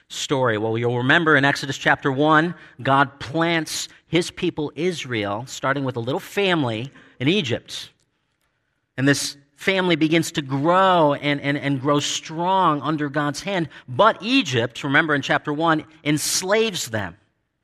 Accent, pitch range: American, 125-160 Hz